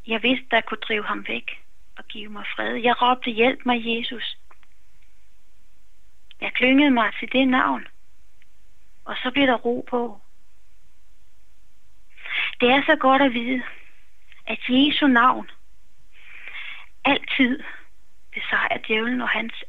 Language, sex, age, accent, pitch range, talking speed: Danish, female, 30-49, native, 220-260 Hz, 130 wpm